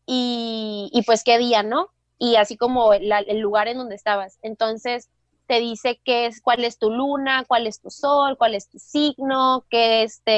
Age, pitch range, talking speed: 20-39, 215-265 Hz, 195 wpm